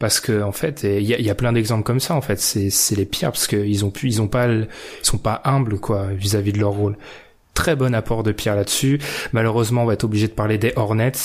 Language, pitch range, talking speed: French, 105-130 Hz, 230 wpm